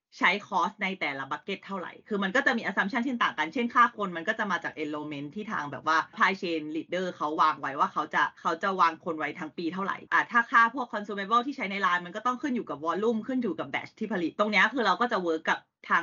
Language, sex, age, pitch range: Thai, female, 30-49, 165-230 Hz